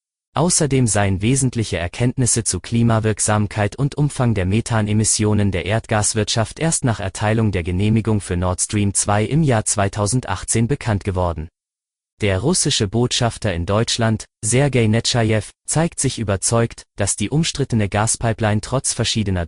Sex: male